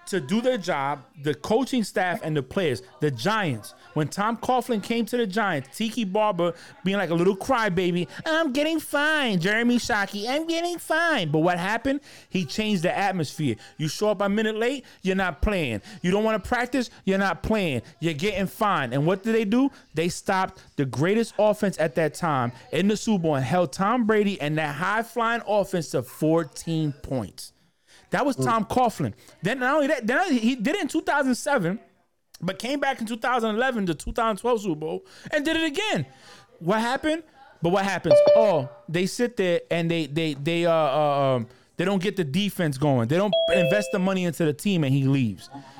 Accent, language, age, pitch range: American, English, 30-49, 155-225 Hz